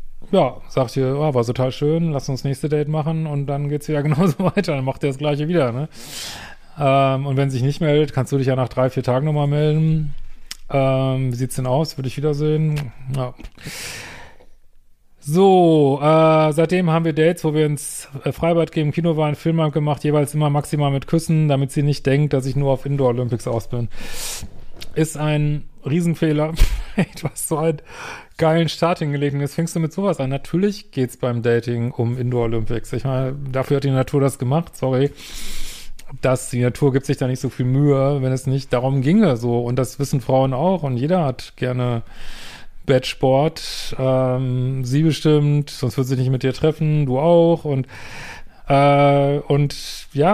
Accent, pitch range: German, 130-155 Hz